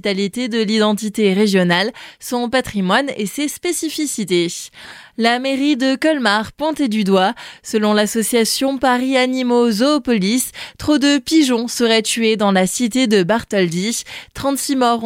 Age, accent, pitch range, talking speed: 20-39, French, 205-260 Hz, 130 wpm